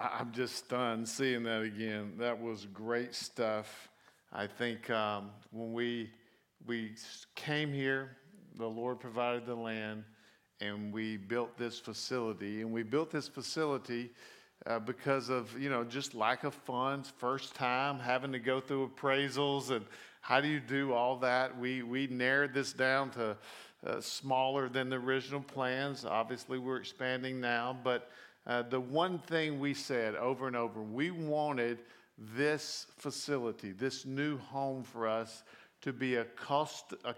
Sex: male